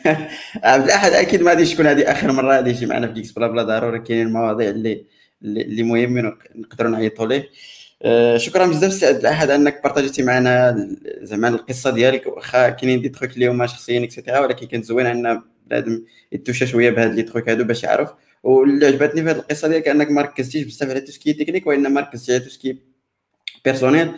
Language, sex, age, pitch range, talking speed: Arabic, male, 20-39, 115-135 Hz, 190 wpm